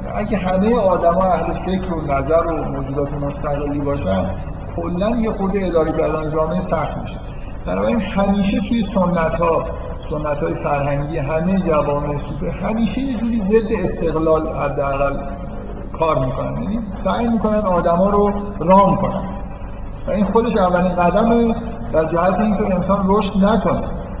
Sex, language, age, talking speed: male, Persian, 50-69, 145 wpm